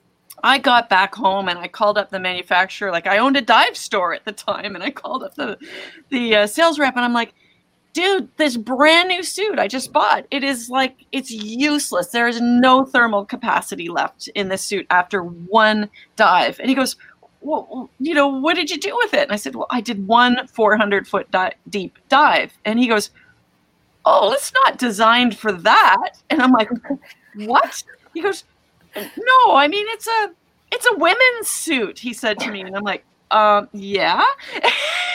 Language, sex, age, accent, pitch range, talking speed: English, female, 30-49, American, 210-280 Hz, 190 wpm